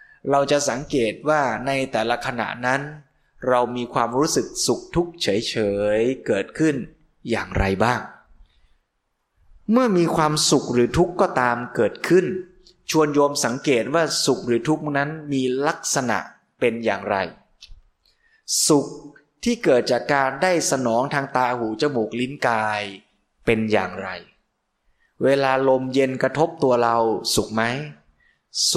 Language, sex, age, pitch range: Thai, male, 20-39, 115-150 Hz